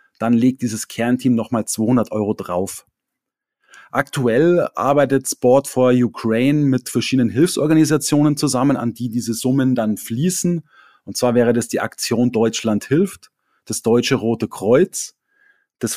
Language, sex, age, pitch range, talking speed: German, male, 30-49, 120-145 Hz, 135 wpm